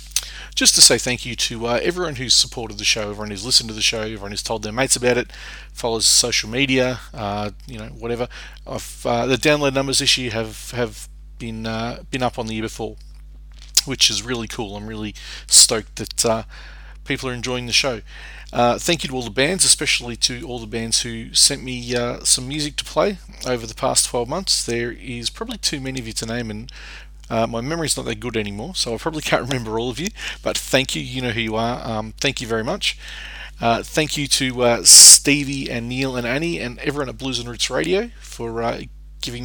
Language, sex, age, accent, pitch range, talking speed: English, male, 30-49, Australian, 110-130 Hz, 220 wpm